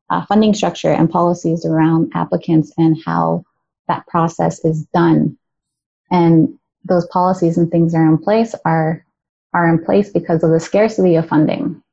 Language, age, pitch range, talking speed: English, 20-39, 160-180 Hz, 155 wpm